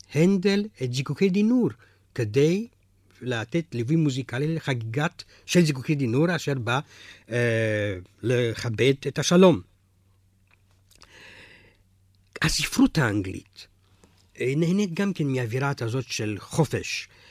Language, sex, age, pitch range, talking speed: Hebrew, male, 60-79, 100-145 Hz, 95 wpm